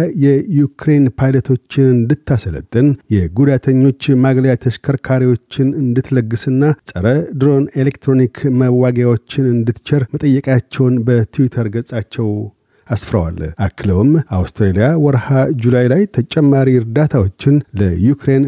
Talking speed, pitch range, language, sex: 80 wpm, 115-140 Hz, Amharic, male